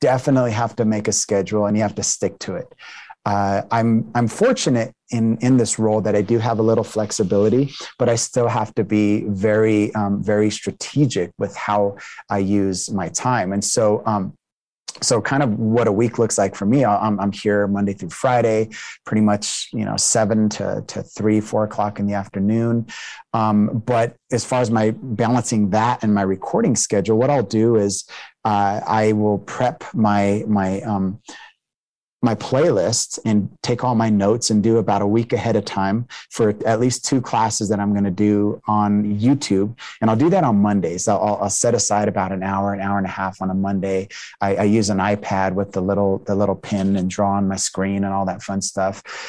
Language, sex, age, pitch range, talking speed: English, male, 30-49, 100-115 Hz, 205 wpm